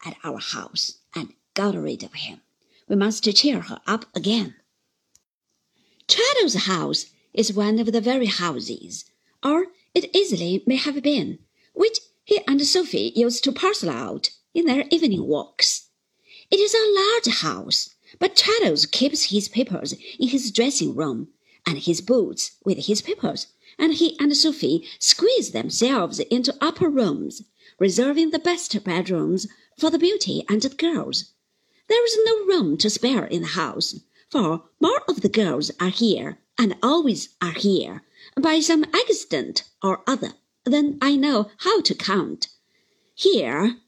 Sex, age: female, 50-69